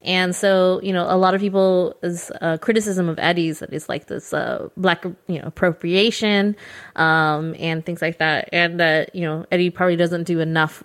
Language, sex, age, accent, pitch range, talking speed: English, female, 20-39, American, 165-190 Hz, 205 wpm